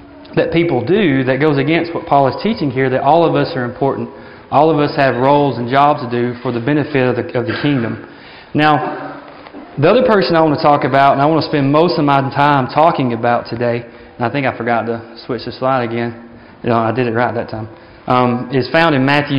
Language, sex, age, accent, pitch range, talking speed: English, male, 30-49, American, 125-155 Hz, 240 wpm